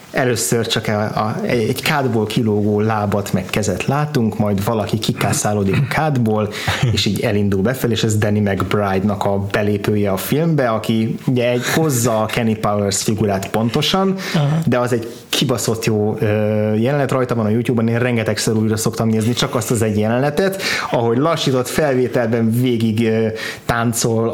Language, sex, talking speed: Hungarian, male, 150 wpm